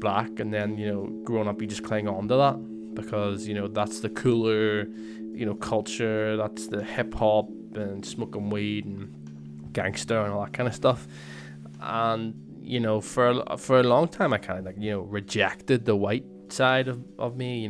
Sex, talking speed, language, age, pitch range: male, 195 wpm, English, 20-39, 95-120 Hz